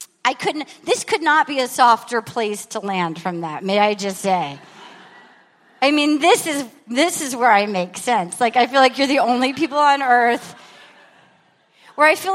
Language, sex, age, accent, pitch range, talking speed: English, female, 30-49, American, 235-335 Hz, 195 wpm